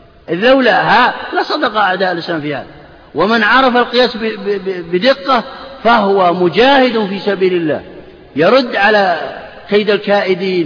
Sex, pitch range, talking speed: male, 165-245 Hz, 115 wpm